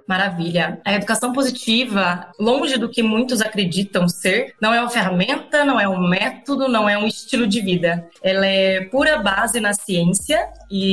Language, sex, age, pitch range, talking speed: Portuguese, female, 20-39, 195-250 Hz, 170 wpm